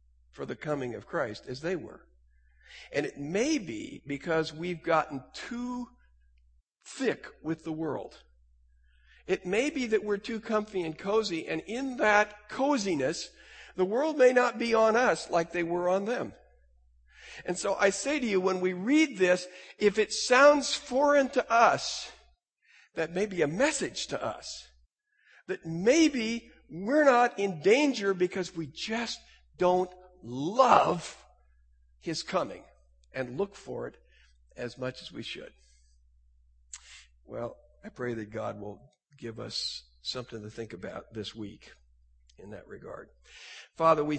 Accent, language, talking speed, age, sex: American, English, 150 wpm, 50-69, male